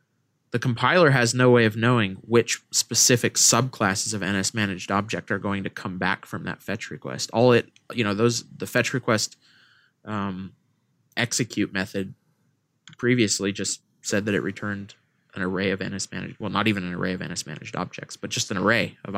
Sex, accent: male, American